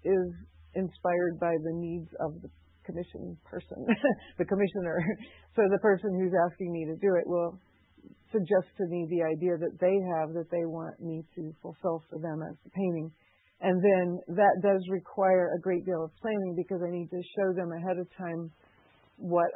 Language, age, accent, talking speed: English, 40-59, American, 185 wpm